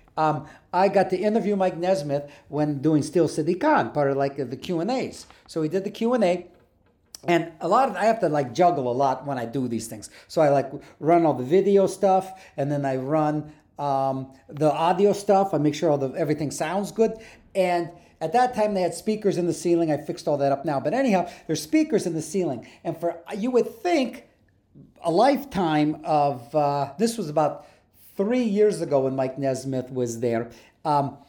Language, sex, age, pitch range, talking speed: English, male, 50-69, 150-215 Hz, 205 wpm